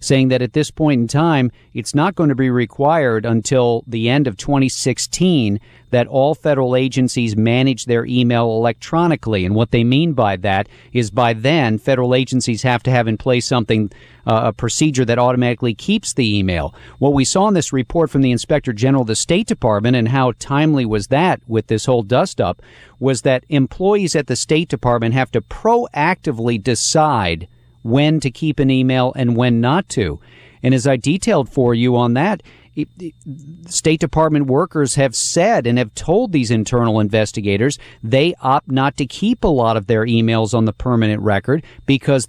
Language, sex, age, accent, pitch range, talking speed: English, male, 40-59, American, 115-140 Hz, 180 wpm